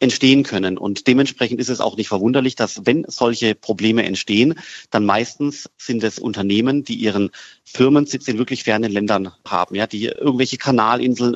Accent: German